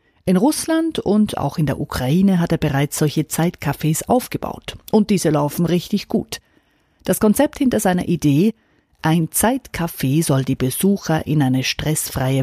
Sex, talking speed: female, 150 wpm